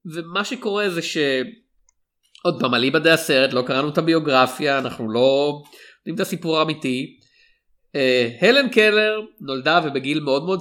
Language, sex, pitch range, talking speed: Hebrew, male, 135-175 Hz, 140 wpm